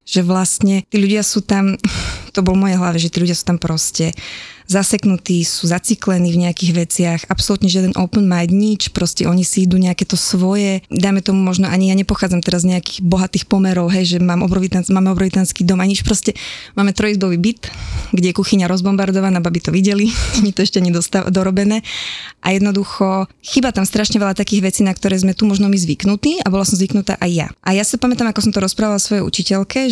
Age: 20-39